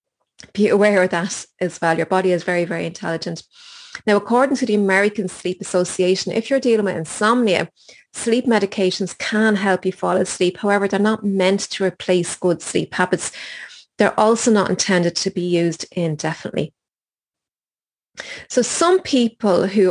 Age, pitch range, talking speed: 30-49, 175-215 Hz, 155 wpm